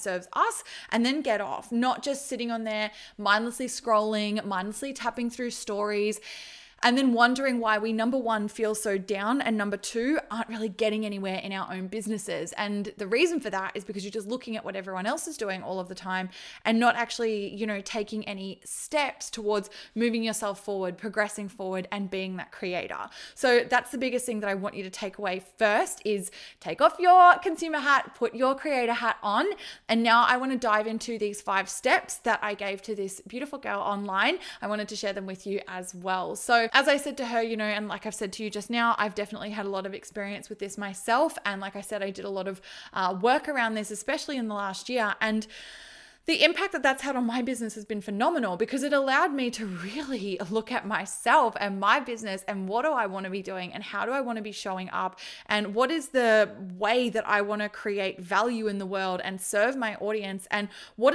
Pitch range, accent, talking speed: 200-250 Hz, Australian, 230 wpm